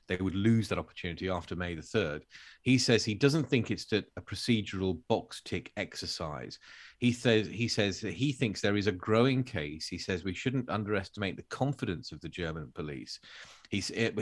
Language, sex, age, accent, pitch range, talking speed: English, male, 40-59, British, 90-115 Hz, 185 wpm